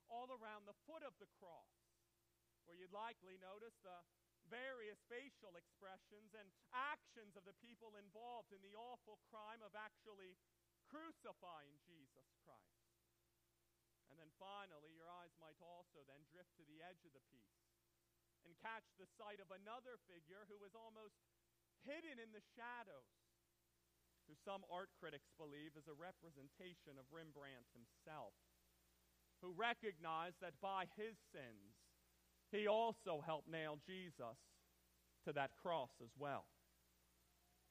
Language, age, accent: English, 40-59, American